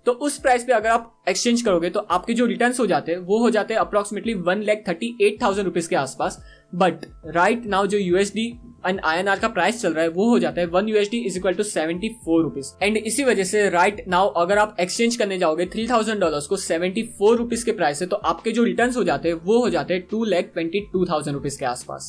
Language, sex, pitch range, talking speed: Hindi, male, 175-220 Hz, 225 wpm